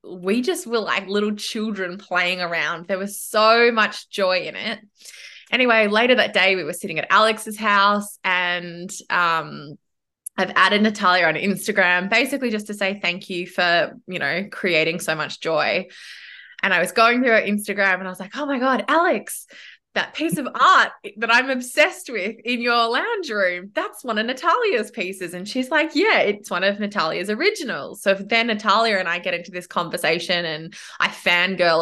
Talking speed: 185 wpm